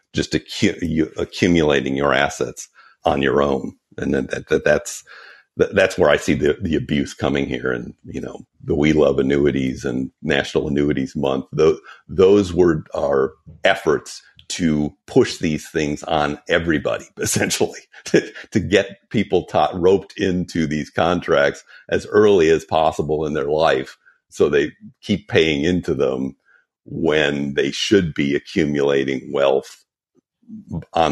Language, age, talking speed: English, 50-69, 135 wpm